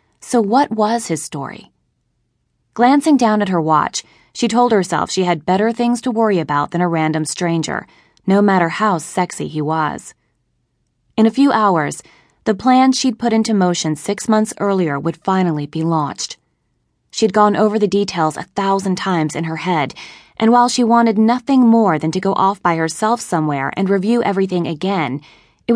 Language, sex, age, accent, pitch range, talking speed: English, female, 20-39, American, 160-220 Hz, 175 wpm